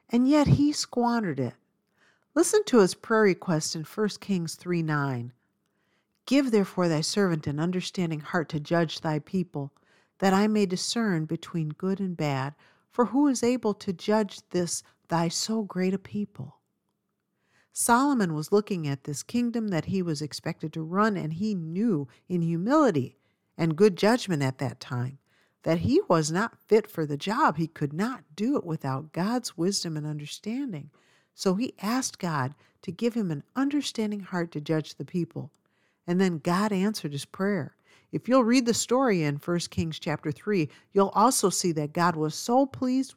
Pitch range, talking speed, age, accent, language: 155-215 Hz, 175 wpm, 50-69, American, English